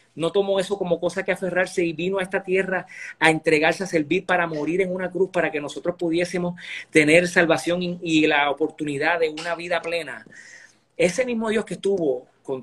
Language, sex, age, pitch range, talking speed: Spanish, male, 30-49, 130-165 Hz, 190 wpm